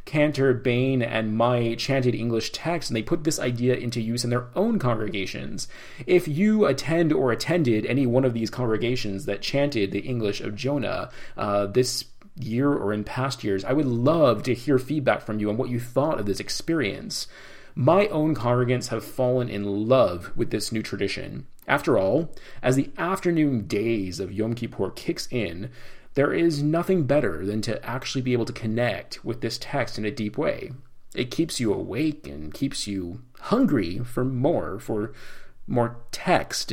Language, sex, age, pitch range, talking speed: English, male, 30-49, 110-140 Hz, 180 wpm